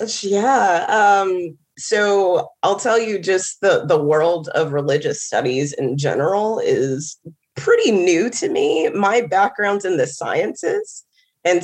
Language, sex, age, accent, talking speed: English, female, 20-39, American, 135 wpm